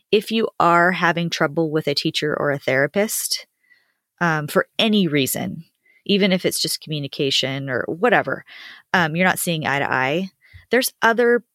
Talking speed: 160 wpm